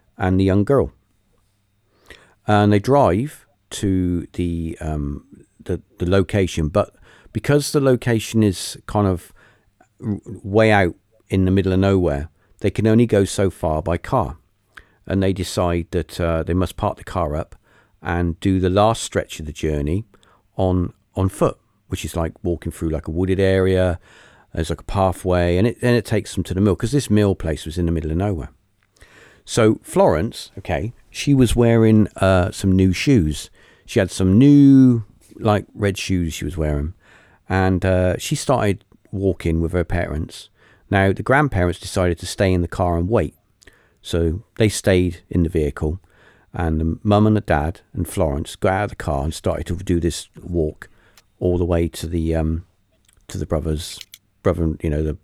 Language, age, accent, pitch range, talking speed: English, 50-69, British, 85-105 Hz, 180 wpm